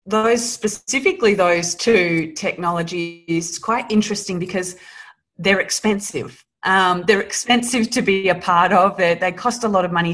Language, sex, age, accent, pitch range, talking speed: English, female, 20-39, Australian, 160-200 Hz, 150 wpm